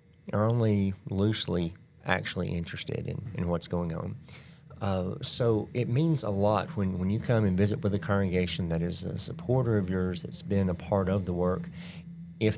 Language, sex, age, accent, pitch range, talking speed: English, male, 40-59, American, 90-120 Hz, 185 wpm